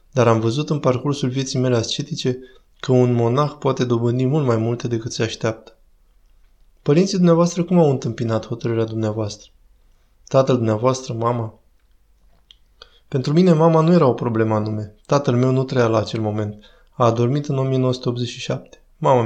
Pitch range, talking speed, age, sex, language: 115-135 Hz, 155 wpm, 20-39, male, Romanian